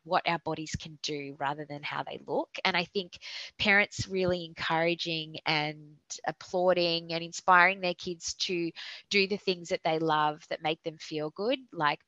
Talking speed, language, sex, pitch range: 175 wpm, English, female, 155-185 Hz